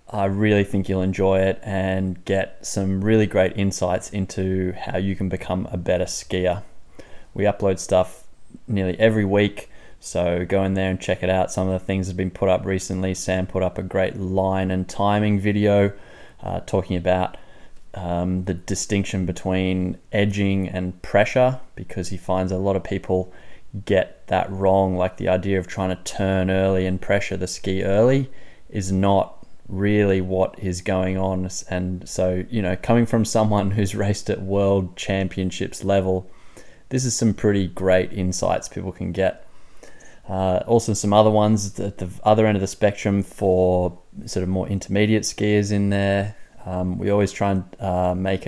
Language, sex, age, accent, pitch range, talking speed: English, male, 20-39, Australian, 95-100 Hz, 175 wpm